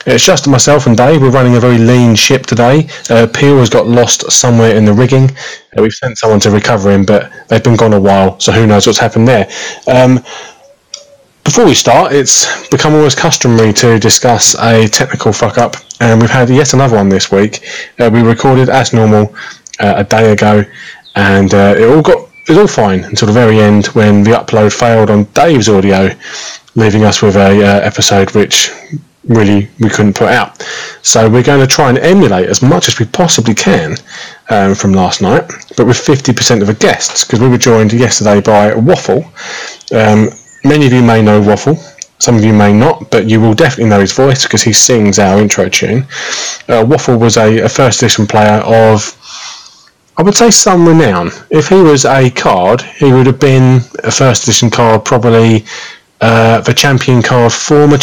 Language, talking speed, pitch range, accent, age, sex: English, 200 wpm, 105-130 Hz, British, 20-39, male